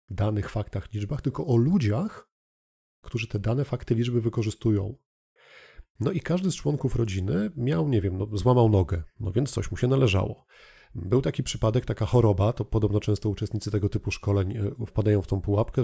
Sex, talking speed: male, 175 wpm